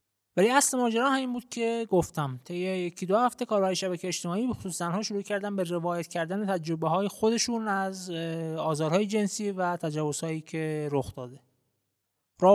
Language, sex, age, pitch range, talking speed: Persian, male, 20-39, 160-225 Hz, 165 wpm